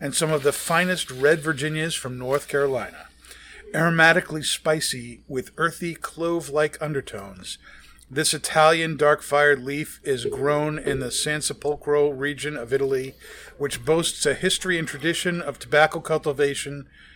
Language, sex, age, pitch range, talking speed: English, male, 50-69, 135-160 Hz, 135 wpm